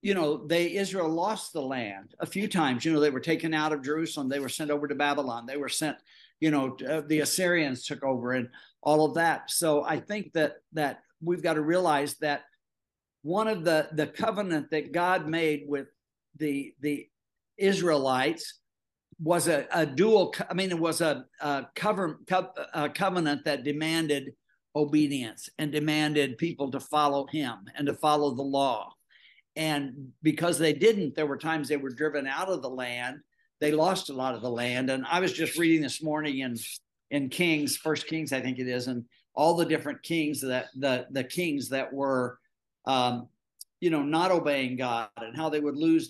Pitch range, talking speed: 140-165 Hz, 195 wpm